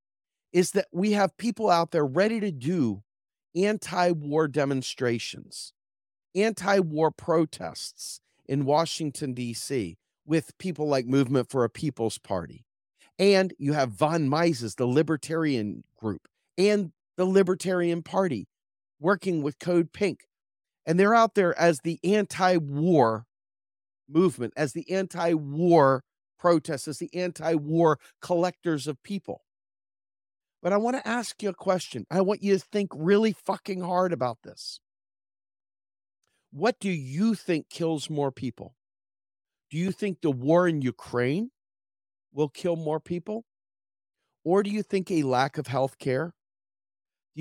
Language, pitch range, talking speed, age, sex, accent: English, 125-180 Hz, 135 wpm, 40-59, male, American